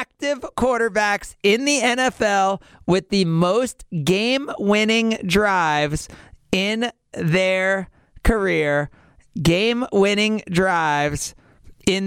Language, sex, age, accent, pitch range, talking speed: English, male, 40-59, American, 165-210 Hz, 80 wpm